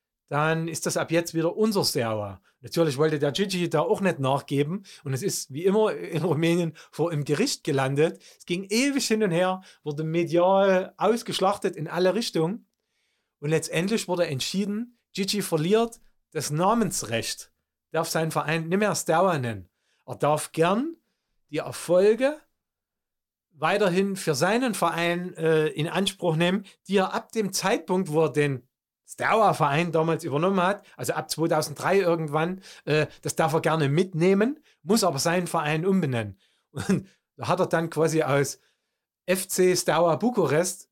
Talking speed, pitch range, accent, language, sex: 150 wpm, 155-190 Hz, German, German, male